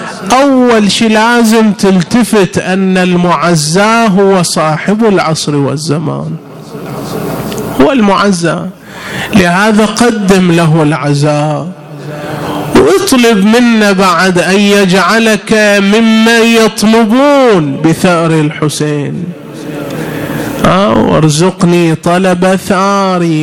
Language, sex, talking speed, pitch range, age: Arabic, male, 70 wpm, 175-225 Hz, 30-49